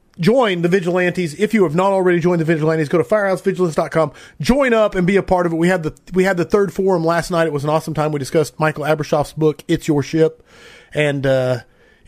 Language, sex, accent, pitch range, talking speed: English, male, American, 150-185 Hz, 235 wpm